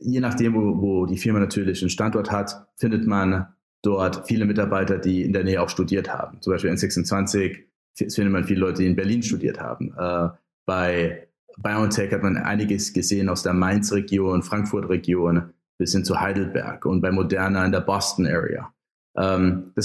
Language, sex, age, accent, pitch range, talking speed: German, male, 30-49, German, 95-105 Hz, 170 wpm